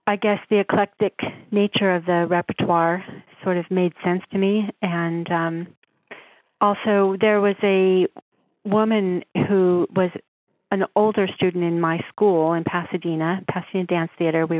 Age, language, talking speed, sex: 40-59, English, 145 wpm, female